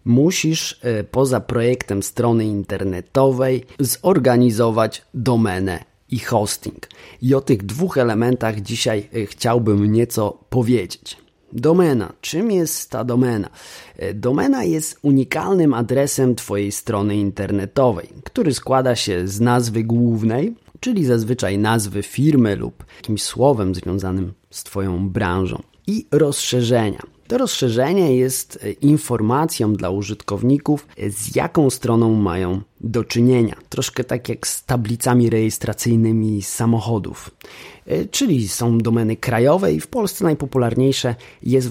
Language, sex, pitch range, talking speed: Polish, male, 105-130 Hz, 110 wpm